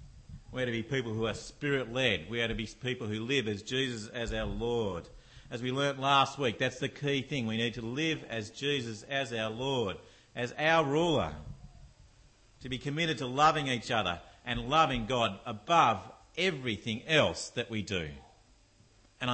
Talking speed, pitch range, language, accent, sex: 180 wpm, 100-130 Hz, English, Australian, male